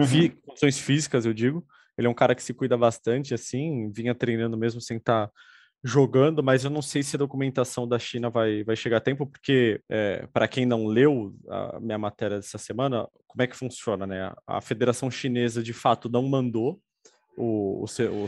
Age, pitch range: 20-39, 115-145 Hz